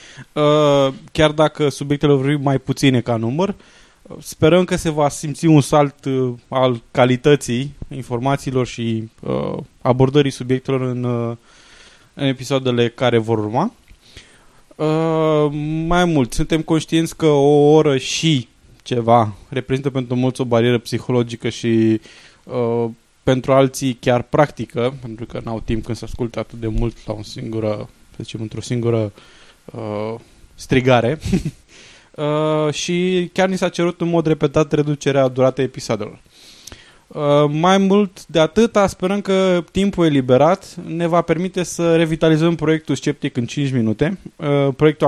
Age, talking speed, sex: 20-39, 135 wpm, male